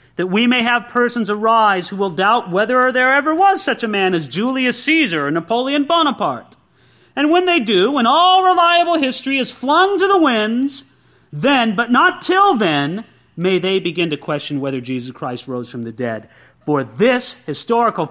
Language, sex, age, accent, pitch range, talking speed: English, male, 40-59, American, 155-245 Hz, 180 wpm